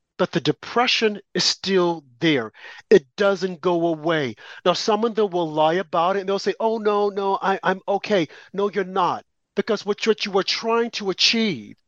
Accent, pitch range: American, 185-235 Hz